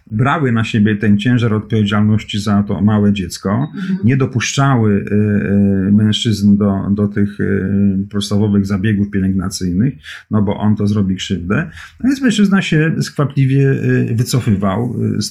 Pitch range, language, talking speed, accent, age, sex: 100-125 Hz, Polish, 125 wpm, native, 40-59, male